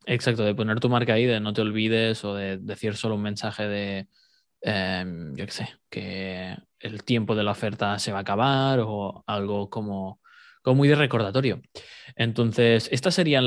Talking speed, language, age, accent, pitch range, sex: 185 wpm, Spanish, 20-39, Spanish, 105-125 Hz, male